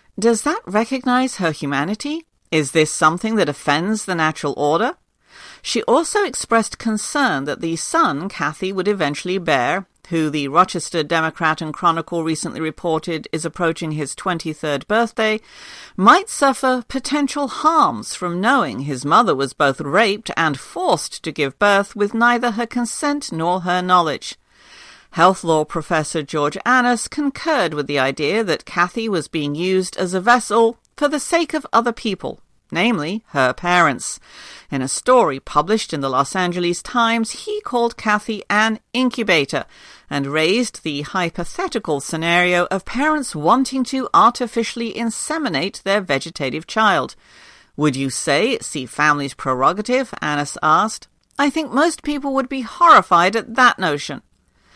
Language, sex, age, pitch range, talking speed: English, female, 50-69, 160-245 Hz, 145 wpm